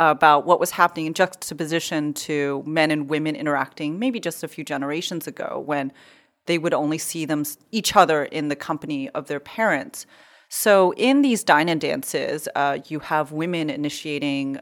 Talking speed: 165 wpm